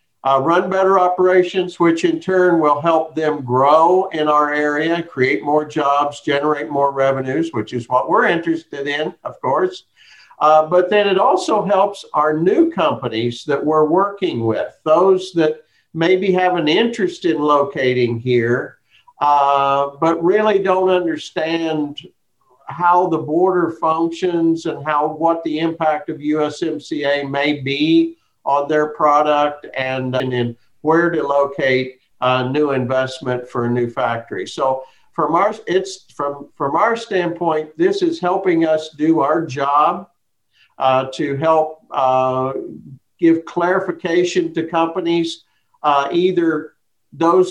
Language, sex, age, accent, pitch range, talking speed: English, male, 50-69, American, 140-175 Hz, 140 wpm